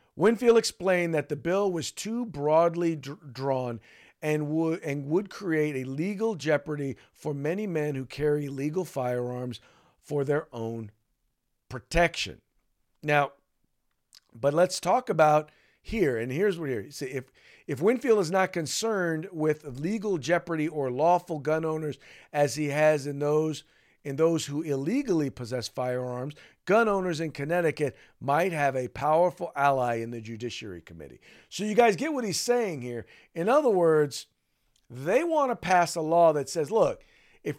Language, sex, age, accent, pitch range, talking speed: English, male, 50-69, American, 130-175 Hz, 155 wpm